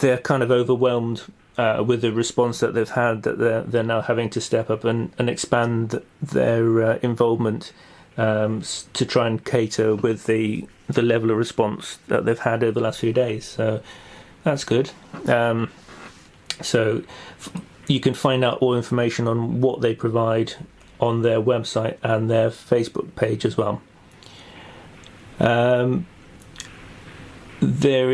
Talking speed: 150 wpm